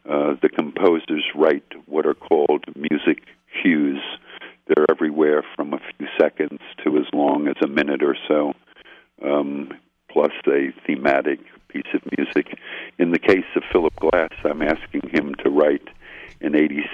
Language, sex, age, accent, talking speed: English, male, 60-79, American, 150 wpm